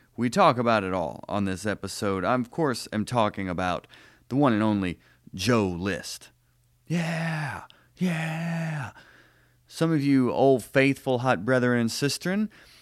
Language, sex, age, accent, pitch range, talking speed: English, male, 30-49, American, 105-130 Hz, 145 wpm